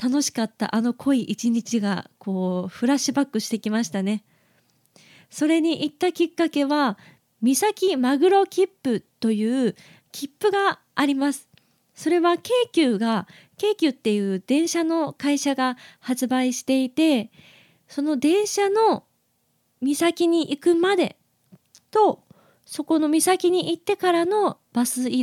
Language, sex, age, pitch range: Japanese, female, 20-39, 225-330 Hz